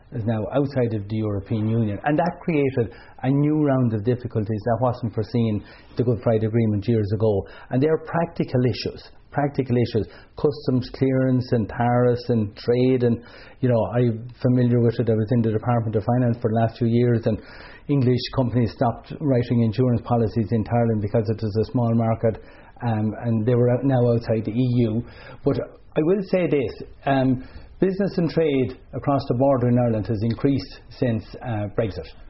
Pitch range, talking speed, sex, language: 115-135 Hz, 180 wpm, male, English